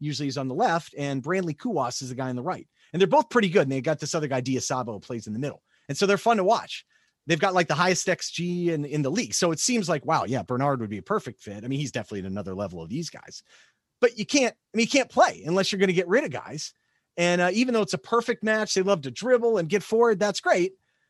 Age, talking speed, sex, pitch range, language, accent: 30-49, 295 wpm, male, 135-200 Hz, English, American